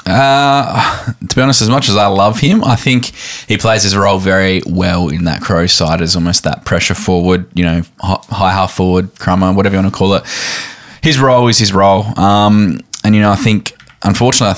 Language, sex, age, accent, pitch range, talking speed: English, male, 10-29, Australian, 90-110 Hz, 210 wpm